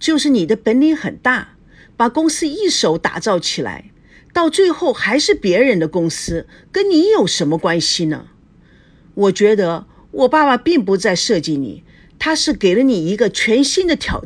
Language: Chinese